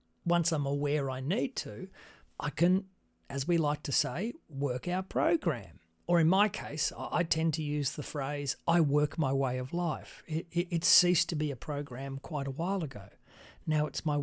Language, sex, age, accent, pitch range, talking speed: English, male, 40-59, Australian, 150-195 Hz, 190 wpm